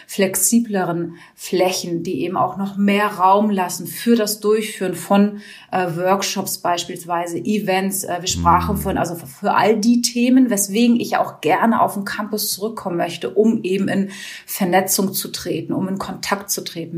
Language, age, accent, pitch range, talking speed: German, 30-49, German, 180-210 Hz, 165 wpm